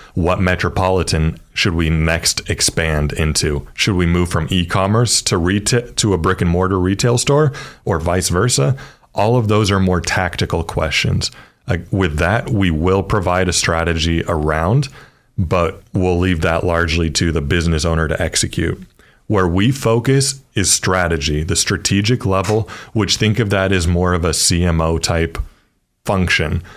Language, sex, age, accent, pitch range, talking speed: English, male, 30-49, American, 85-110 Hz, 155 wpm